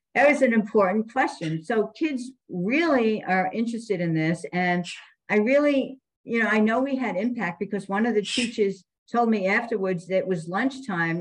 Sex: female